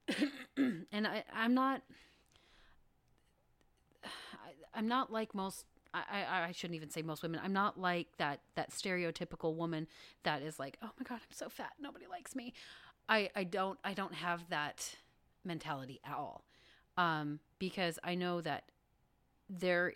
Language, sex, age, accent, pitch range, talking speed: English, female, 30-49, American, 160-195 Hz, 155 wpm